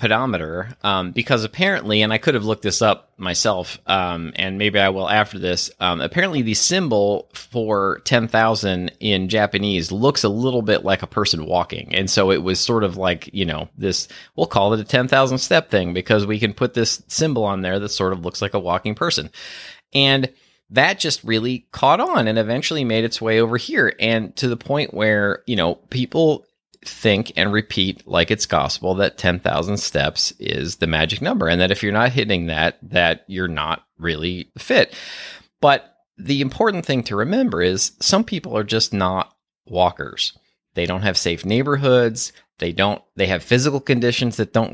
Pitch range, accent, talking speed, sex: 95-125 Hz, American, 190 wpm, male